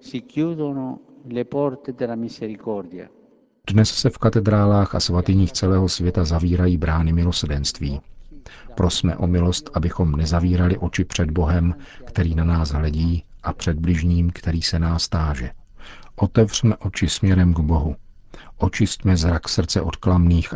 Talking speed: 115 wpm